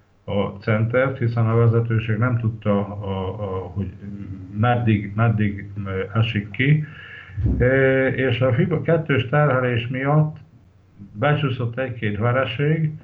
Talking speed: 95 wpm